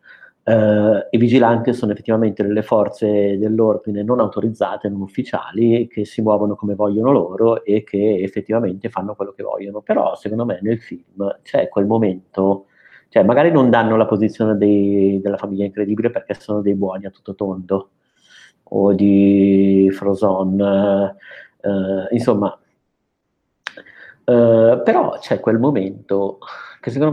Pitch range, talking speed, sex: 100-110 Hz, 135 wpm, male